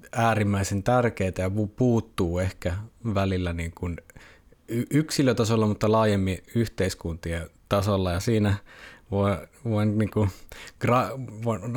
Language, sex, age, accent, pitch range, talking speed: Finnish, male, 20-39, native, 95-110 Hz, 95 wpm